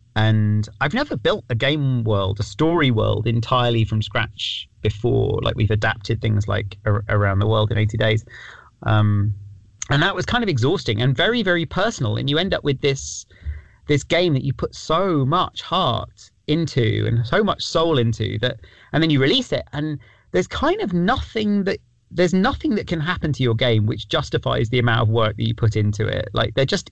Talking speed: 200 wpm